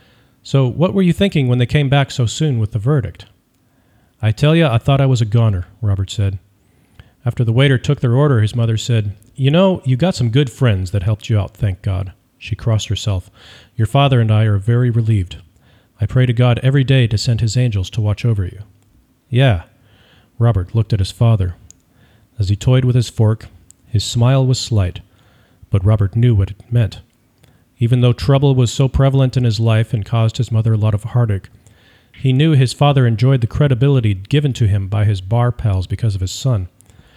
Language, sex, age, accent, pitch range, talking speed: English, male, 40-59, American, 105-130 Hz, 205 wpm